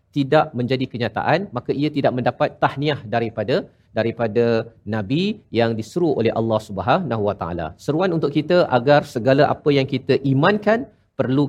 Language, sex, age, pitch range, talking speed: Malayalam, male, 50-69, 120-155 Hz, 145 wpm